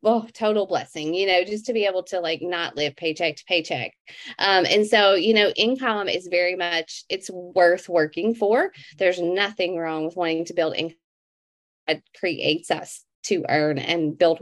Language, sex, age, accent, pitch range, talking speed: English, female, 30-49, American, 165-205 Hz, 185 wpm